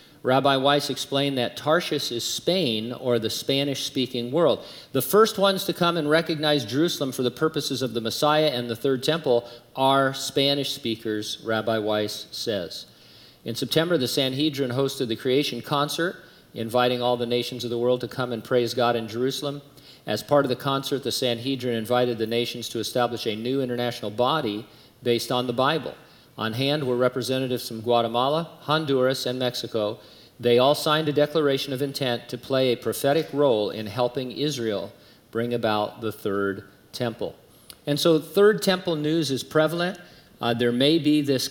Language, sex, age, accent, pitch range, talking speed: English, male, 50-69, American, 115-140 Hz, 170 wpm